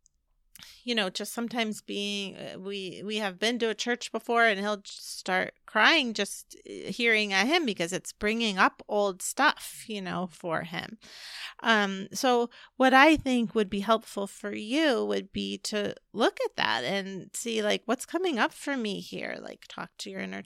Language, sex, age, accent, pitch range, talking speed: English, female, 30-49, American, 190-235 Hz, 180 wpm